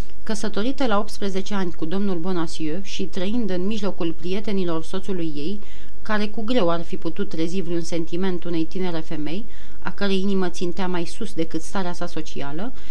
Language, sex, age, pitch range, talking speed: Romanian, female, 30-49, 170-205 Hz, 165 wpm